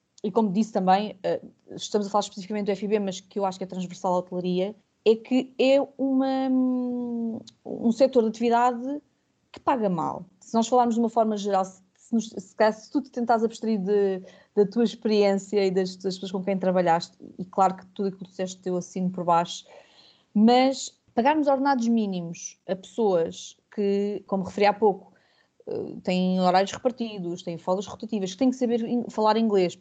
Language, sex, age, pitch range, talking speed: Portuguese, female, 20-39, 185-230 Hz, 185 wpm